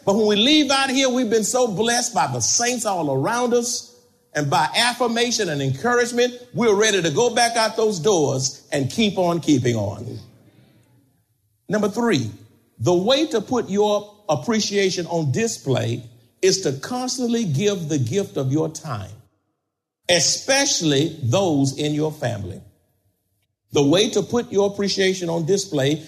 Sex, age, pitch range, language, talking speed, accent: male, 50-69, 135-220 Hz, English, 150 wpm, American